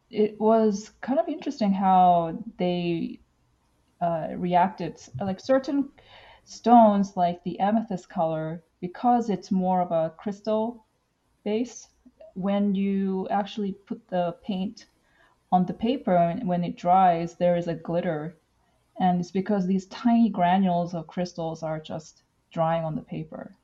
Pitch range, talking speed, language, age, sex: 180-230 Hz, 135 wpm, English, 30-49, female